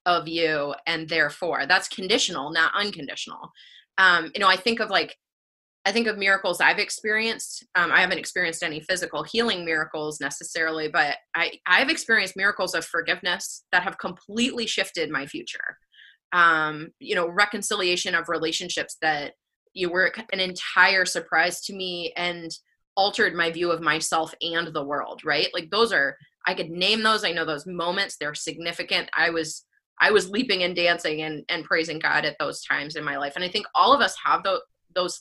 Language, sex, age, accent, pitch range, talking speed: English, female, 20-39, American, 165-210 Hz, 180 wpm